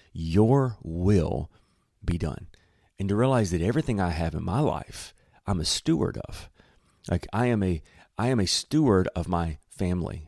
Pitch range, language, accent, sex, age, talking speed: 80-105 Hz, English, American, male, 40-59, 170 wpm